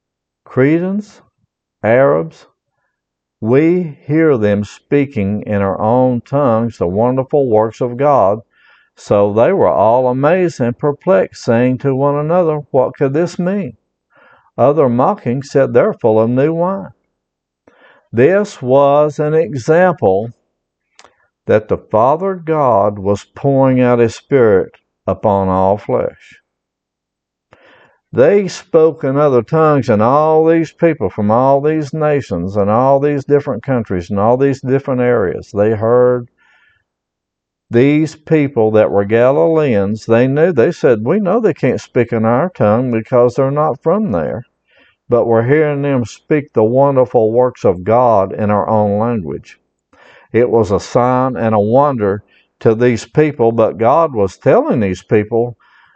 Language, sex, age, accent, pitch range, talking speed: English, male, 60-79, American, 110-150 Hz, 140 wpm